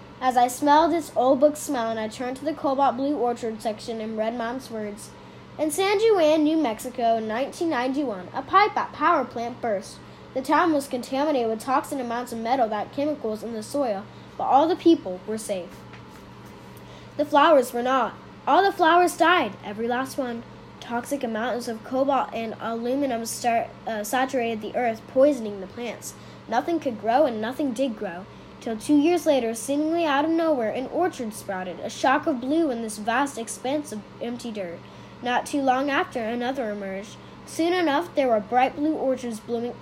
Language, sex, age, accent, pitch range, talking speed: English, female, 10-29, American, 230-295 Hz, 180 wpm